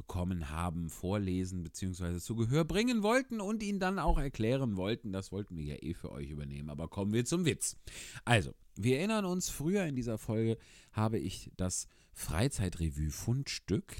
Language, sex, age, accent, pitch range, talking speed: German, male, 40-59, German, 95-145 Hz, 165 wpm